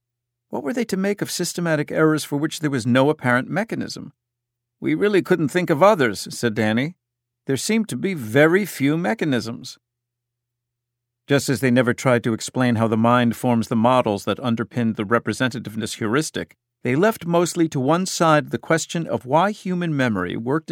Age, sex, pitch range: 50-69, male, 120-160 Hz